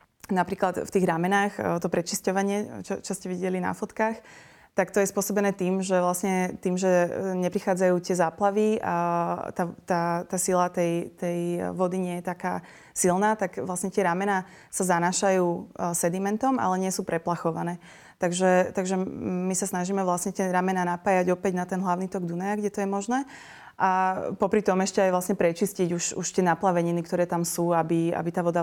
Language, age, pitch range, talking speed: Slovak, 20-39, 175-195 Hz, 175 wpm